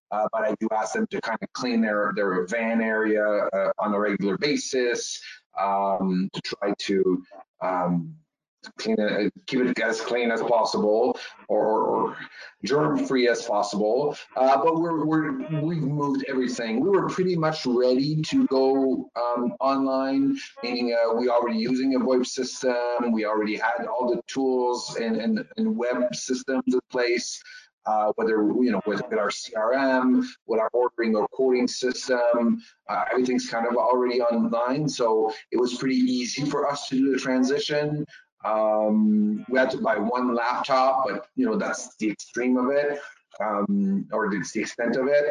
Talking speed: 170 wpm